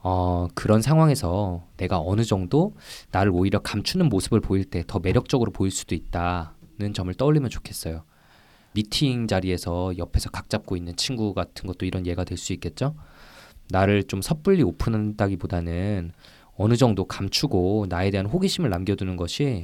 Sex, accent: male, native